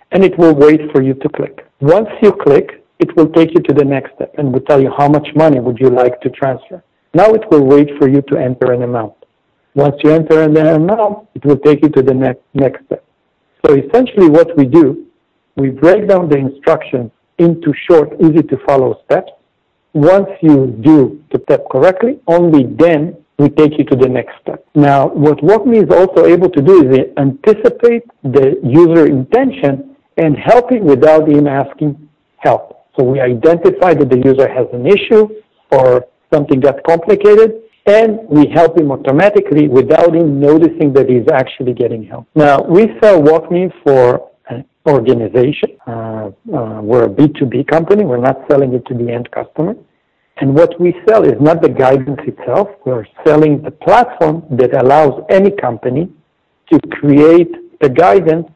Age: 60-79